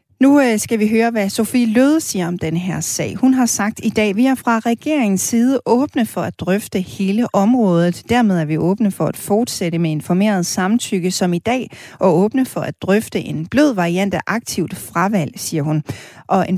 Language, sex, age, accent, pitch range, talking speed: Danish, female, 30-49, native, 175-235 Hz, 205 wpm